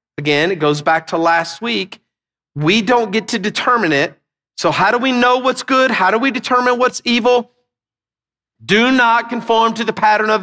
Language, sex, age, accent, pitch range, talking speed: English, male, 40-59, American, 185-245 Hz, 190 wpm